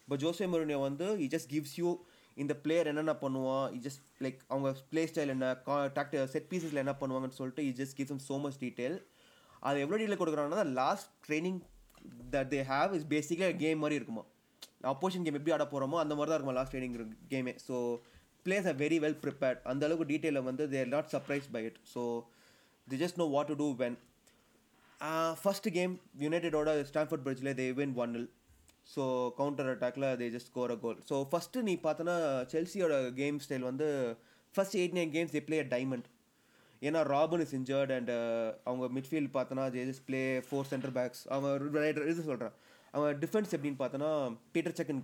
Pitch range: 130-155 Hz